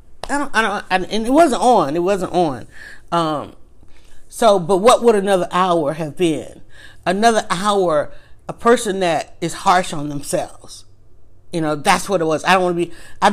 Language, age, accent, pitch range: English, 40-59, American, 160-200 Hz